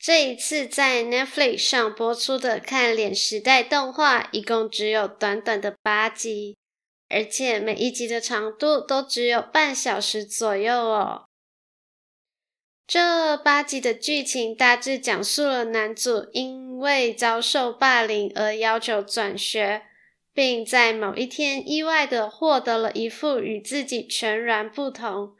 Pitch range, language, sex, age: 220-260 Hz, Chinese, female, 10-29